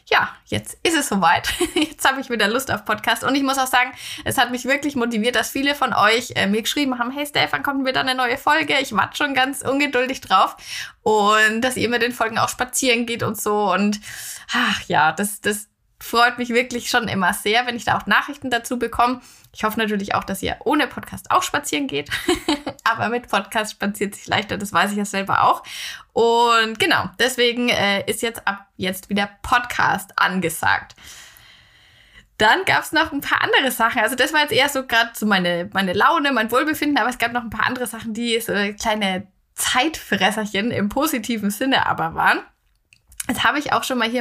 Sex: female